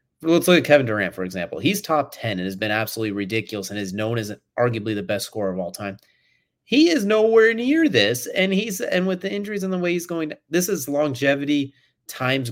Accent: American